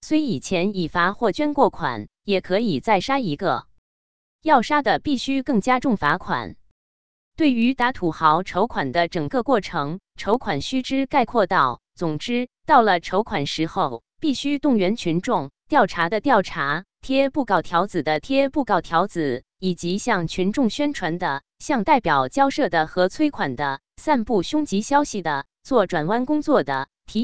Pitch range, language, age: 160-250 Hz, Chinese, 20-39